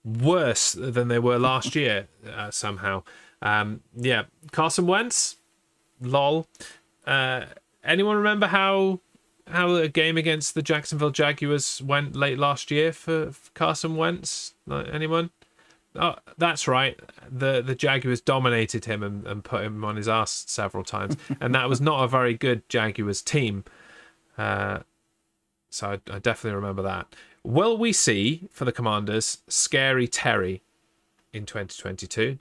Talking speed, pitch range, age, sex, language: 145 wpm, 105-155 Hz, 30-49, male, English